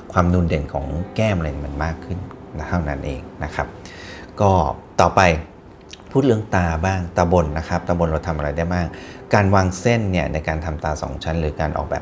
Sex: male